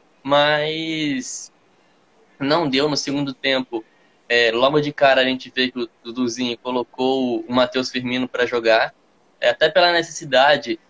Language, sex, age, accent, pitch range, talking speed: Portuguese, male, 10-29, Brazilian, 135-180 Hz, 145 wpm